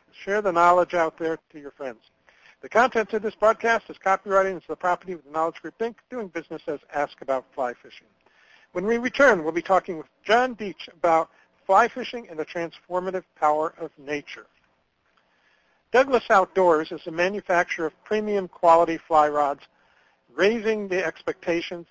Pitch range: 155-195 Hz